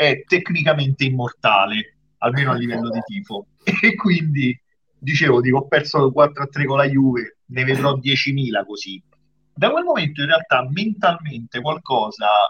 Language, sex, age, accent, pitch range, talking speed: Italian, male, 40-59, native, 120-140 Hz, 145 wpm